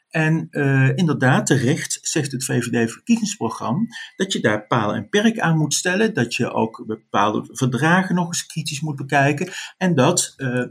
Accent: Dutch